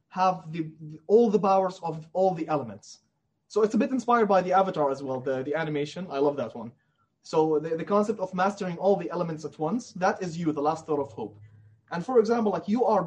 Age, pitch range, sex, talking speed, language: 20-39, 155-195 Hz, male, 240 wpm, English